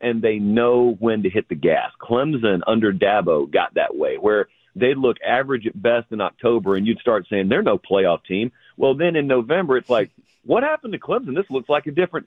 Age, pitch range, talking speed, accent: 40-59, 120-170 Hz, 220 wpm, American